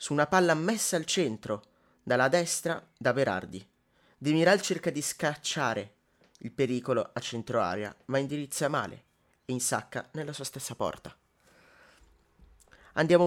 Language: Italian